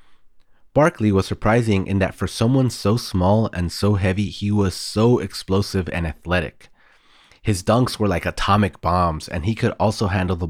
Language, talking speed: English, 170 wpm